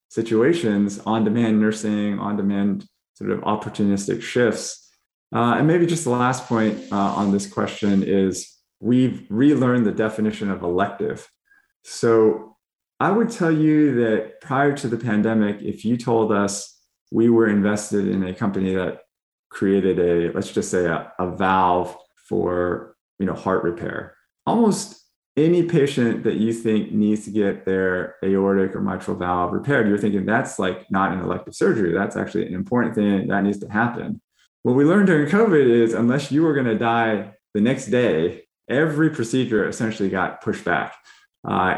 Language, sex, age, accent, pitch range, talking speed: English, male, 20-39, American, 100-120 Hz, 165 wpm